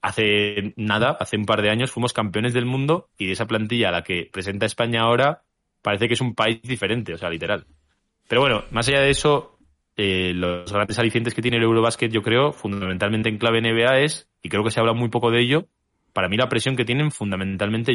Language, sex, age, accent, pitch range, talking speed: Spanish, male, 20-39, Spanish, 100-125 Hz, 225 wpm